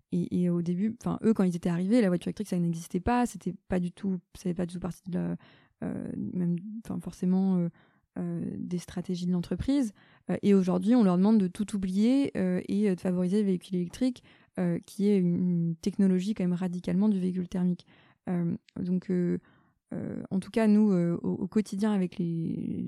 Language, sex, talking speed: French, female, 200 wpm